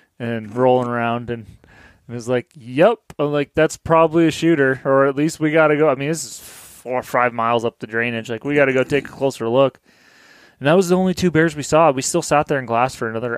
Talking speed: 260 wpm